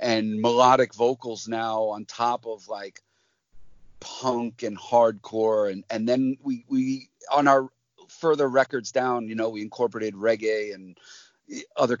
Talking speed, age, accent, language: 140 wpm, 40-59, American, English